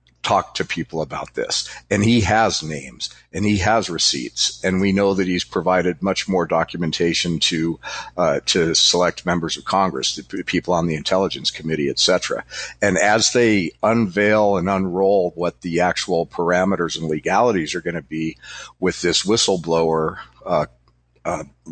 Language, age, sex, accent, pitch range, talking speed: English, 50-69, male, American, 80-100 Hz, 160 wpm